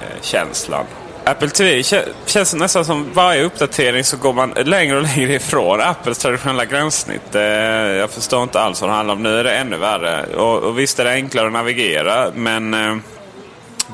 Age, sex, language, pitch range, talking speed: 30-49, male, Swedish, 115-145 Hz, 180 wpm